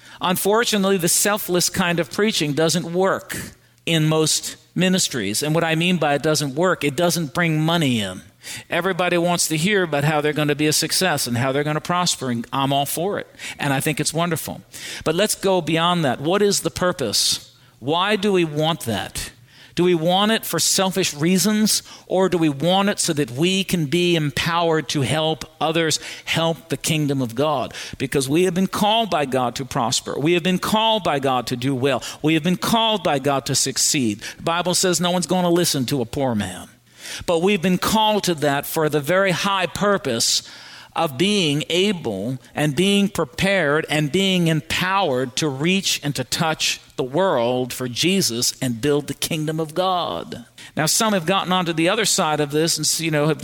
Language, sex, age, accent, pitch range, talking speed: English, male, 50-69, American, 145-185 Hz, 200 wpm